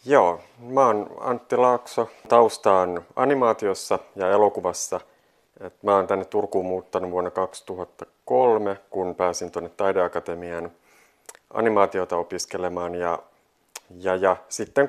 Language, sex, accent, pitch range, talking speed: Finnish, male, native, 90-105 Hz, 110 wpm